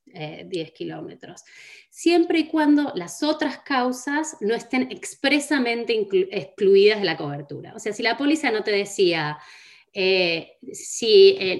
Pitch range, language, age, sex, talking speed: 170-285 Hz, Spanish, 30-49, female, 140 wpm